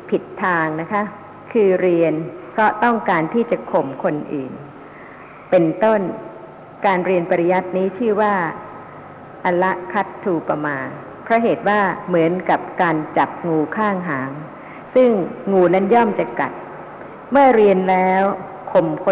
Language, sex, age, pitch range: Thai, female, 60-79, 175-220 Hz